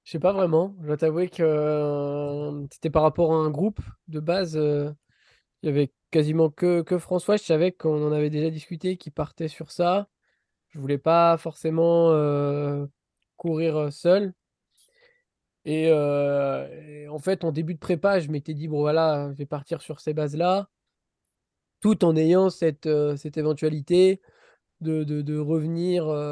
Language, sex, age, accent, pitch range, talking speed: French, male, 20-39, French, 150-175 Hz, 165 wpm